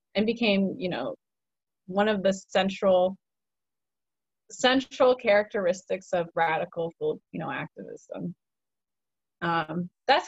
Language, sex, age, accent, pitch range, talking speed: English, female, 20-39, American, 185-235 Hz, 100 wpm